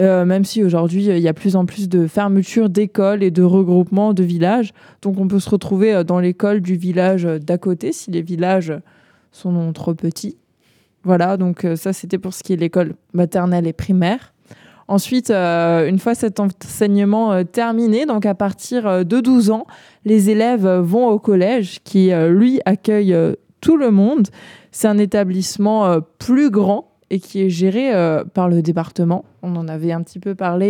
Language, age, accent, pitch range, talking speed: French, 20-39, French, 175-210 Hz, 180 wpm